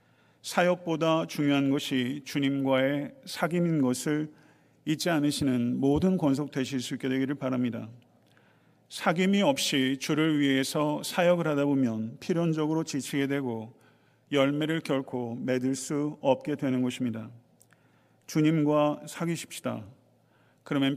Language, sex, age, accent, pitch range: Korean, male, 40-59, native, 130-150 Hz